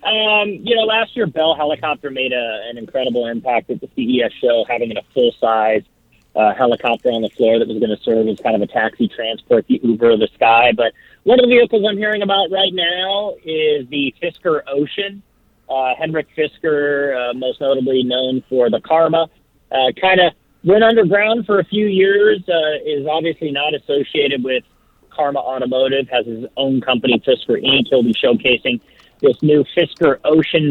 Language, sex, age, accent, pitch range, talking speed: English, male, 30-49, American, 130-180 Hz, 185 wpm